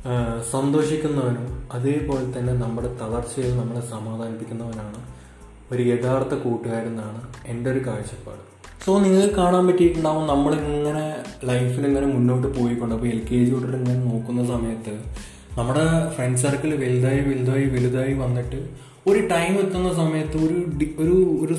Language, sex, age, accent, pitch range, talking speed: Malayalam, male, 20-39, native, 120-155 Hz, 115 wpm